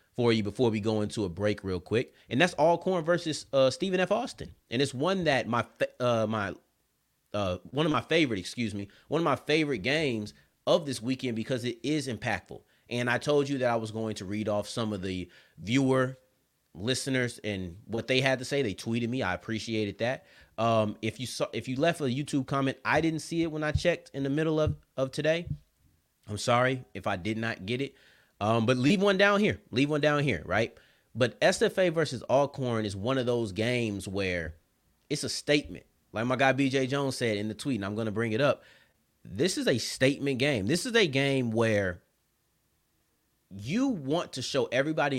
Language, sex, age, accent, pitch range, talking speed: English, male, 30-49, American, 110-140 Hz, 210 wpm